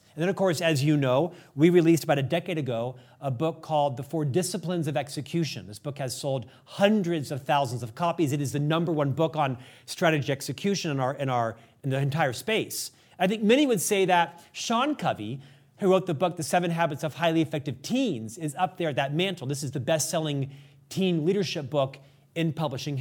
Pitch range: 135-170 Hz